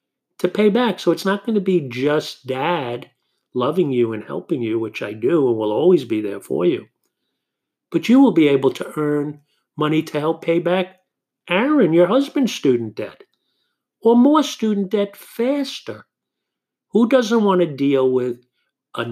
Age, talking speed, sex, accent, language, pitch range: 50-69, 175 wpm, male, American, English, 120-175 Hz